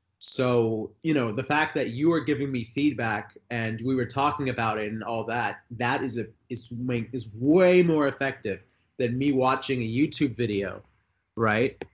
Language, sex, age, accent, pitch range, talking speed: English, male, 30-49, American, 110-140 Hz, 180 wpm